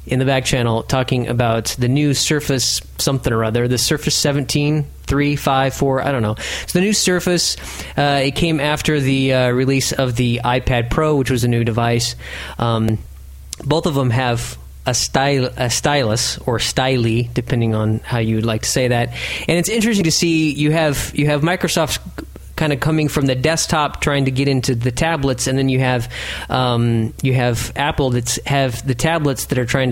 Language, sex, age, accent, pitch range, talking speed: English, male, 30-49, American, 120-150 Hz, 195 wpm